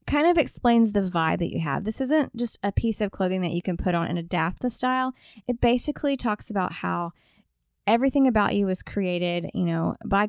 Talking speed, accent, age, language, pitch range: 215 wpm, American, 20-39, English, 190-255 Hz